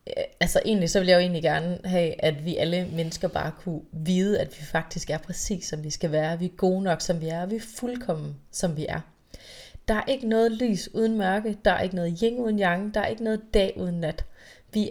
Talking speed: 240 wpm